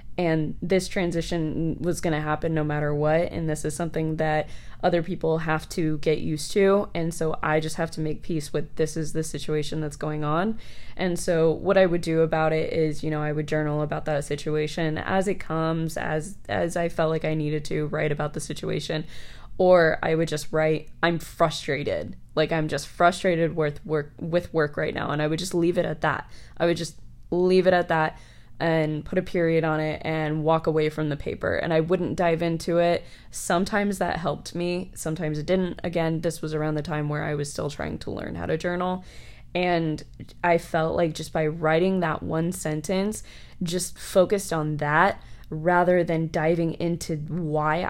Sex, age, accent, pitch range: female, 20-39, American, 155-175 Hz